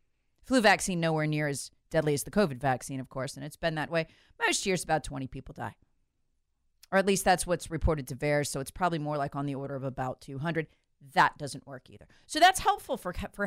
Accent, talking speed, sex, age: American, 225 wpm, female, 40-59